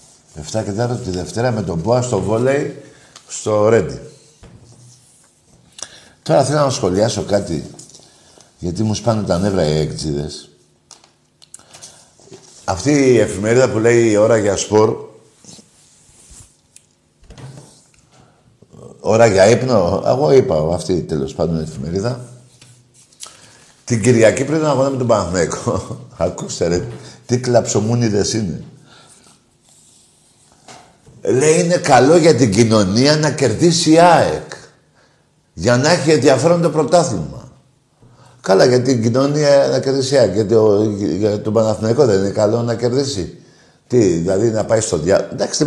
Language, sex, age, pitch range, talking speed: Greek, male, 50-69, 110-145 Hz, 140 wpm